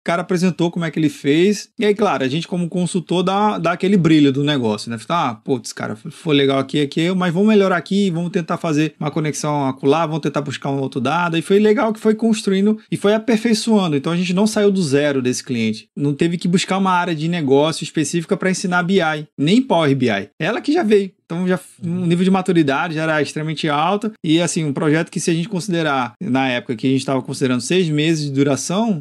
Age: 20-39